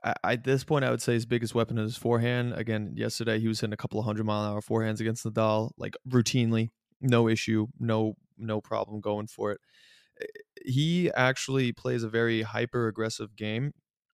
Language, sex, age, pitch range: English, male, 20-39, 110-125 Hz